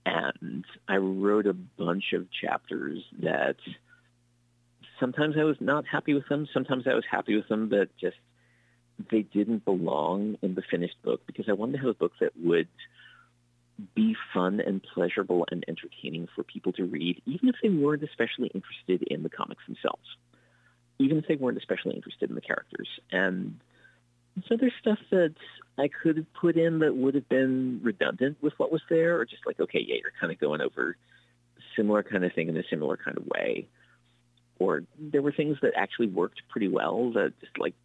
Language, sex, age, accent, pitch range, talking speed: English, male, 40-59, American, 105-150 Hz, 190 wpm